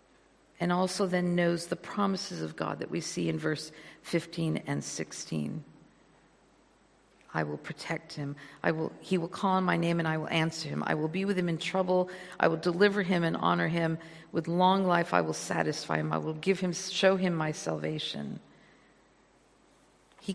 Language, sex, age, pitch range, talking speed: English, female, 50-69, 155-195 Hz, 185 wpm